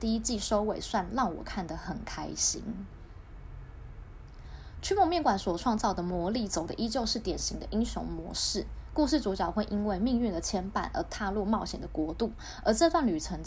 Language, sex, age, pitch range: Chinese, female, 20-39, 185-245 Hz